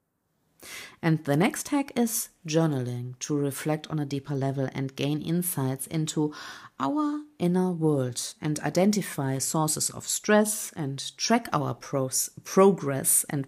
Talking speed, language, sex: 130 wpm, English, female